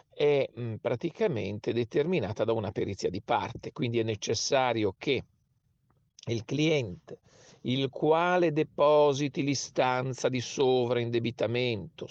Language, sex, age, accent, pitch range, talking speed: Italian, male, 40-59, native, 110-140 Hz, 100 wpm